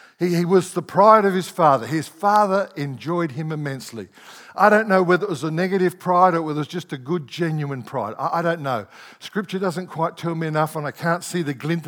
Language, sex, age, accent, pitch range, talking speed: English, male, 60-79, Australian, 150-190 Hz, 225 wpm